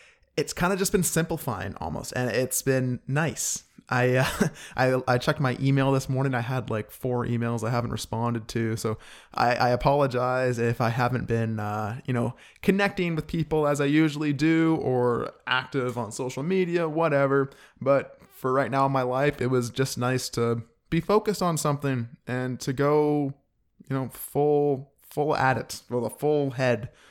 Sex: male